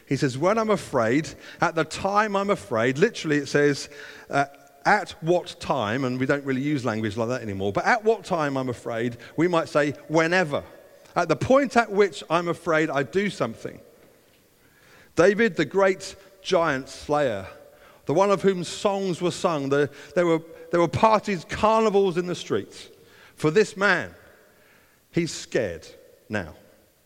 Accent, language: British, English